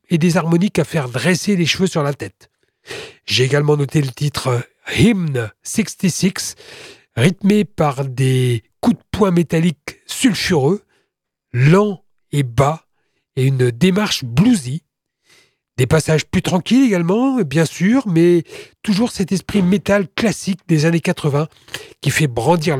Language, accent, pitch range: French, French, 135-185 Hz